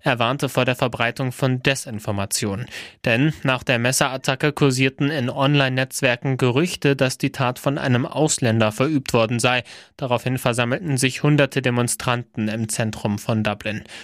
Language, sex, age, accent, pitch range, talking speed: German, male, 20-39, German, 115-135 Hz, 140 wpm